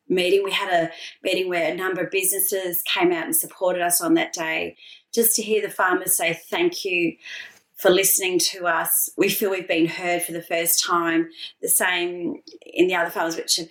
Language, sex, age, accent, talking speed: English, female, 30-49, Australian, 205 wpm